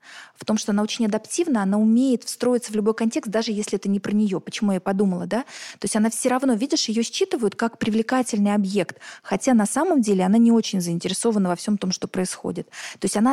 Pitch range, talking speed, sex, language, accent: 200-235 Hz, 220 wpm, female, Russian, native